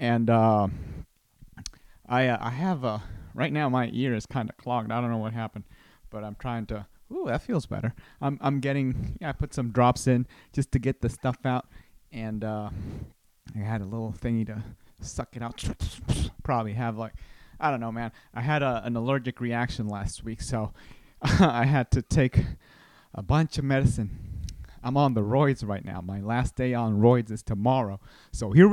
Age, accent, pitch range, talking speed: 30-49, American, 110-140 Hz, 195 wpm